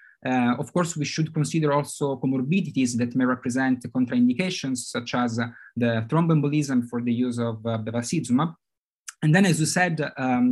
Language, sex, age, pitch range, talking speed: English, male, 20-39, 125-150 Hz, 165 wpm